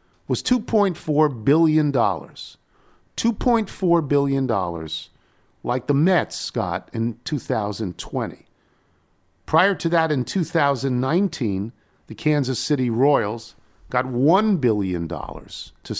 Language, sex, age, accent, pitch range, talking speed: English, male, 50-69, American, 105-175 Hz, 90 wpm